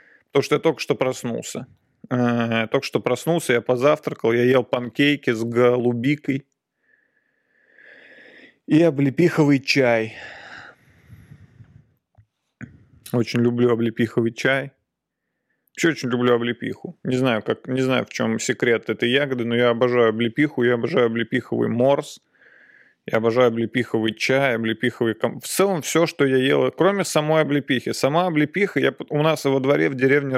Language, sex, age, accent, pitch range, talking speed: Russian, male, 20-39, native, 120-150 Hz, 130 wpm